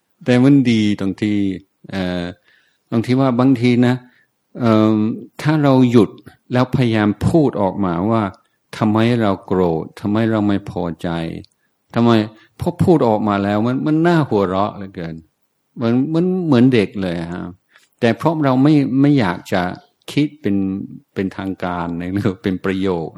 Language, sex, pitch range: Thai, male, 95-120 Hz